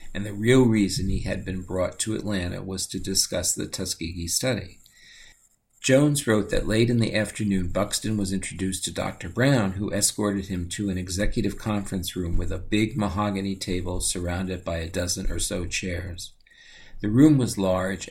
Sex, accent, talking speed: male, American, 175 wpm